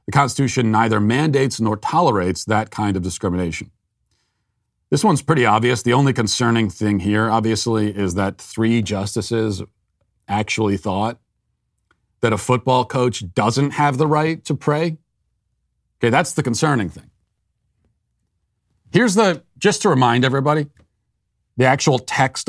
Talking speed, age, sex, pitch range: 135 wpm, 40-59, male, 100-130 Hz